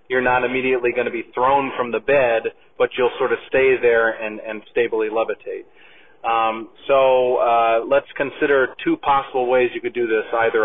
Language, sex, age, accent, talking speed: English, male, 30-49, American, 185 wpm